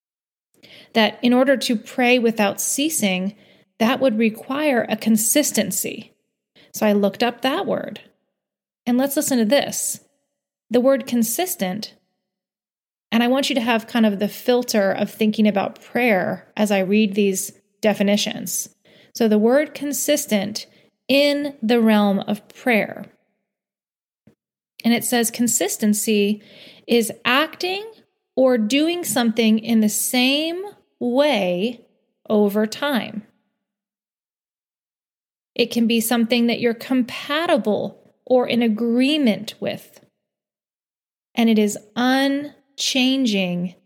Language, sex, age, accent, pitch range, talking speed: English, female, 30-49, American, 210-265 Hz, 115 wpm